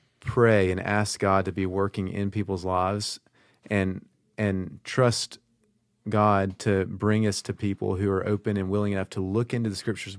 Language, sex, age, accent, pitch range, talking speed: English, male, 30-49, American, 100-120 Hz, 175 wpm